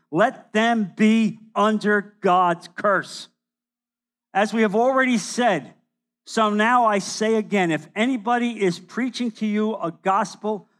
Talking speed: 135 wpm